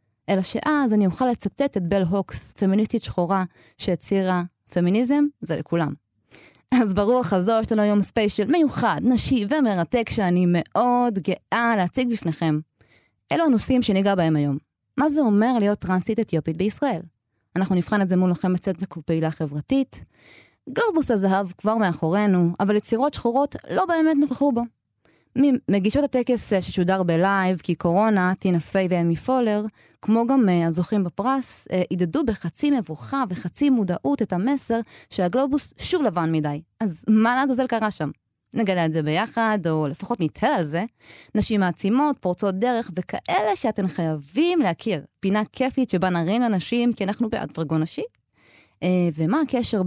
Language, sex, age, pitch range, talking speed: Hebrew, female, 20-39, 175-240 Hz, 145 wpm